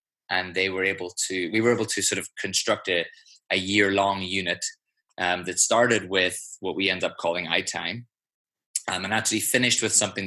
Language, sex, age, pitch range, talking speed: English, male, 20-39, 90-120 Hz, 185 wpm